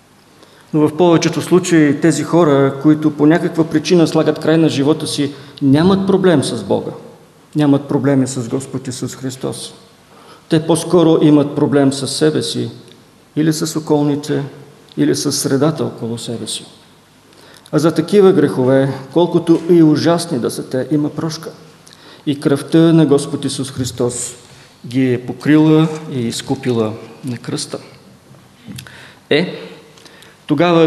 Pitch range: 135-160 Hz